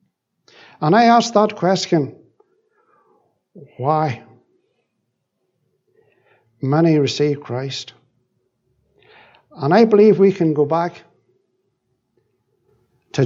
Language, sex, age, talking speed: English, male, 60-79, 75 wpm